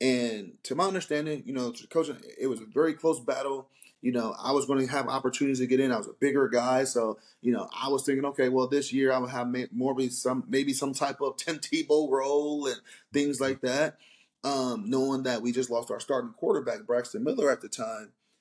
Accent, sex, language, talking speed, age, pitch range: American, male, English, 225 wpm, 30-49, 125-155 Hz